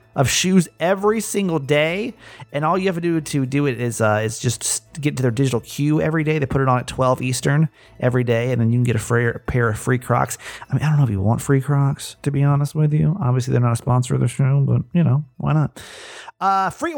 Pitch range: 125-175 Hz